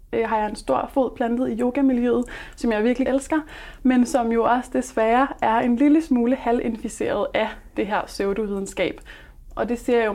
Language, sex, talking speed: Danish, female, 190 wpm